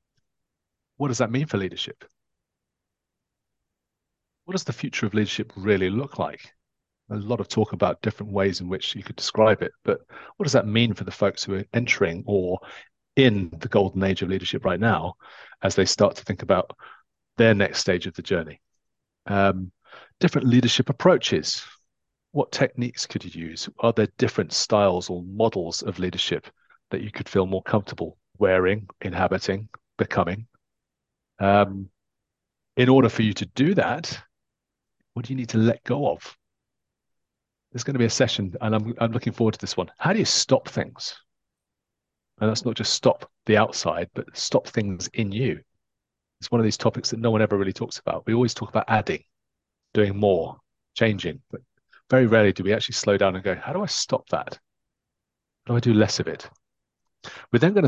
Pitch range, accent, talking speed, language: 95-120 Hz, British, 185 wpm, English